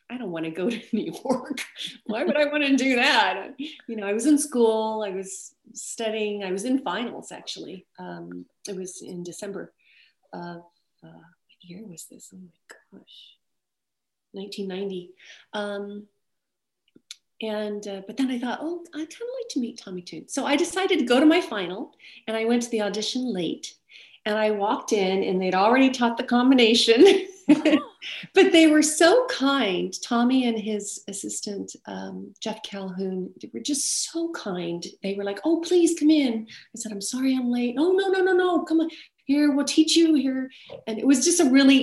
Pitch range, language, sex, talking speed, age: 190-275 Hz, English, female, 190 wpm, 40-59